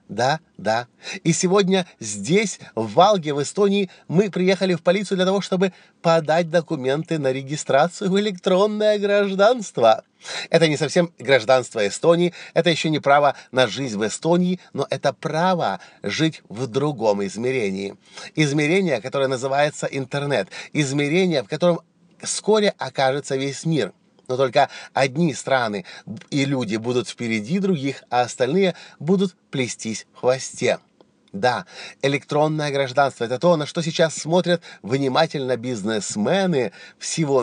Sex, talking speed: male, 130 wpm